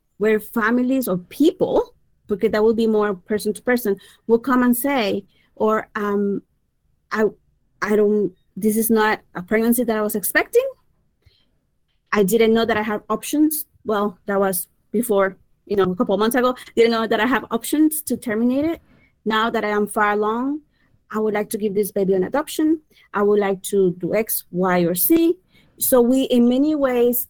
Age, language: 30-49, English